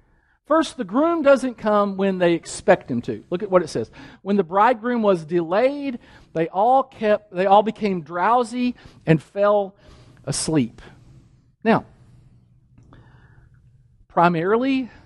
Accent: American